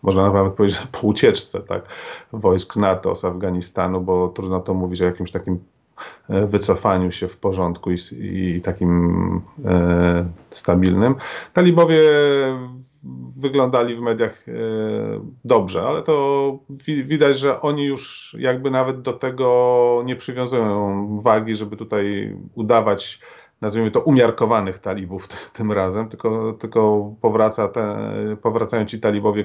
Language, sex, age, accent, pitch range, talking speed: Polish, male, 30-49, native, 95-120 Hz, 125 wpm